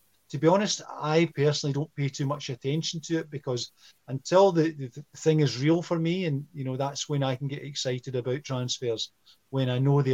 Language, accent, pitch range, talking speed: English, British, 120-150 Hz, 220 wpm